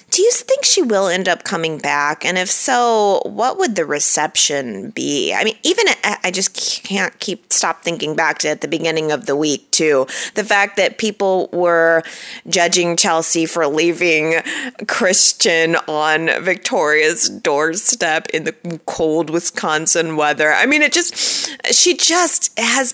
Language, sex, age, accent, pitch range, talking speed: English, female, 30-49, American, 170-240 Hz, 155 wpm